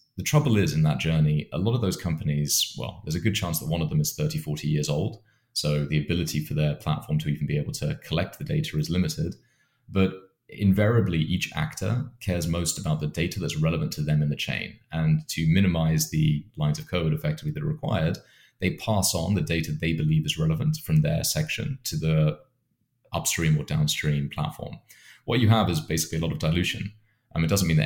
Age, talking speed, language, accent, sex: 30-49, 220 wpm, English, British, male